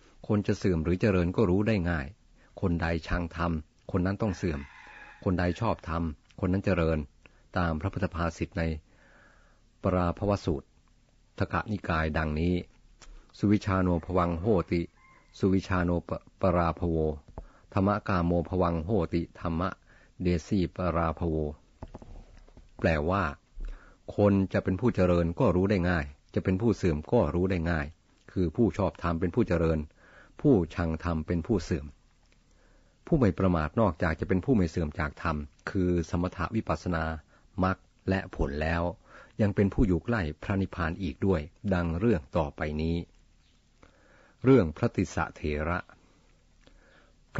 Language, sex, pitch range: Thai, male, 80-95 Hz